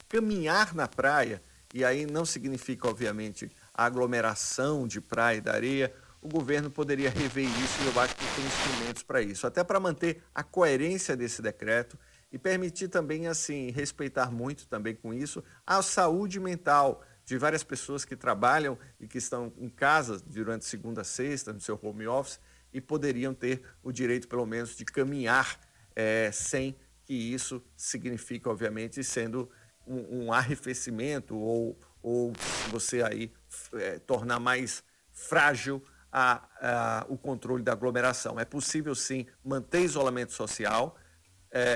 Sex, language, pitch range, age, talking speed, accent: male, Portuguese, 115-140 Hz, 50-69, 150 wpm, Brazilian